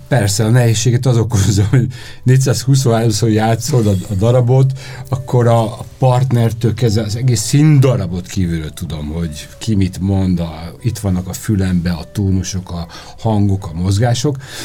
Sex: male